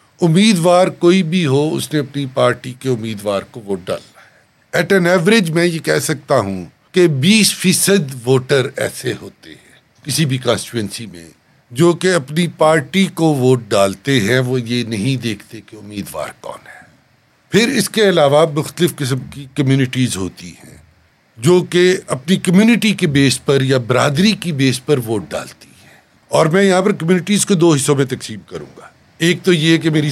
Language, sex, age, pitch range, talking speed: Urdu, male, 60-79, 130-185 Hz, 180 wpm